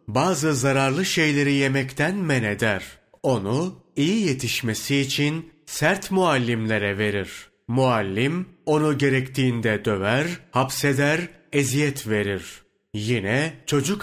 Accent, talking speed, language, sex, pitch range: native, 95 wpm, Turkish, male, 110-145 Hz